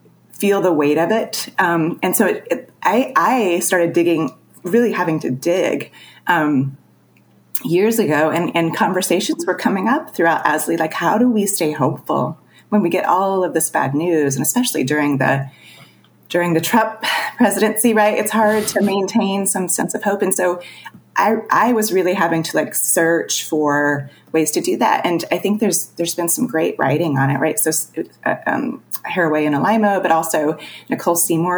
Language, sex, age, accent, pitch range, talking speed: English, female, 30-49, American, 160-210 Hz, 180 wpm